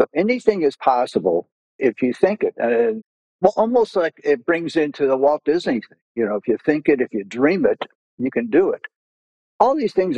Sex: male